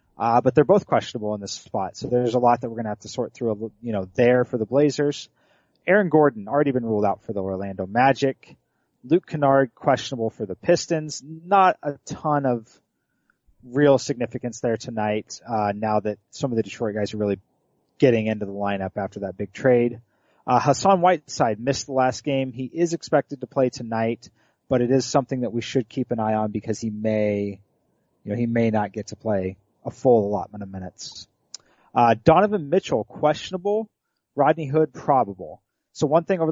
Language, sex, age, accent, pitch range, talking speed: English, male, 30-49, American, 110-140 Hz, 195 wpm